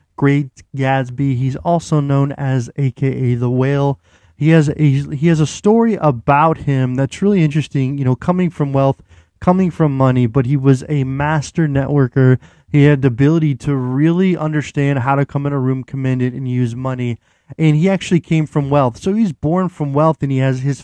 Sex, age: male, 20-39